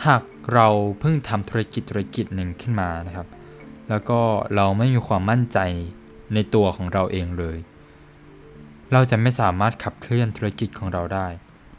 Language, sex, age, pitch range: Thai, male, 20-39, 90-115 Hz